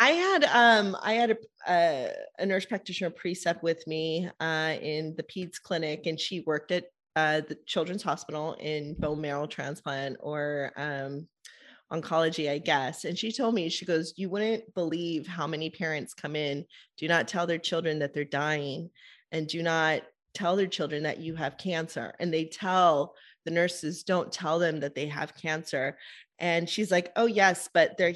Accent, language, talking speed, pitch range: American, English, 185 wpm, 155-185 Hz